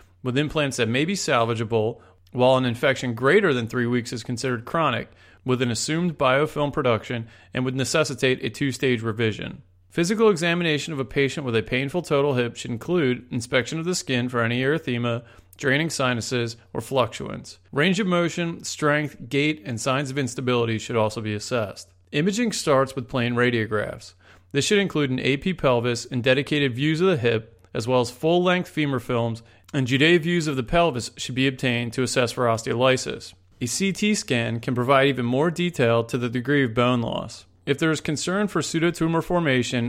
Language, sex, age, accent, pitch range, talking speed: English, male, 30-49, American, 120-150 Hz, 180 wpm